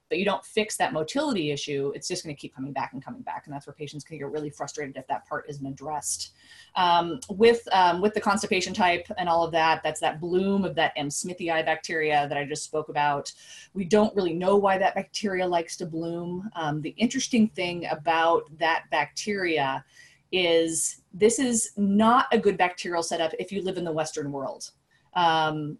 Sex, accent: female, American